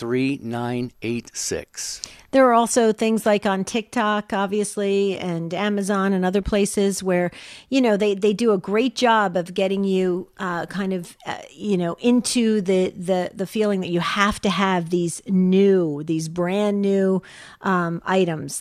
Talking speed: 170 wpm